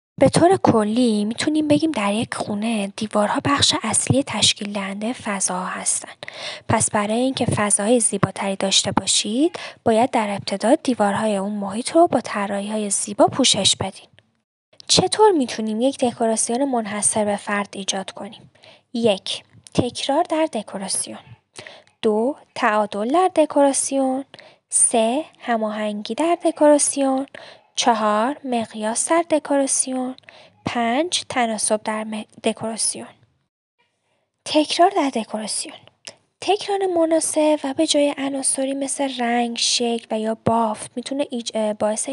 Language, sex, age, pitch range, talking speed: Persian, female, 10-29, 215-280 Hz, 115 wpm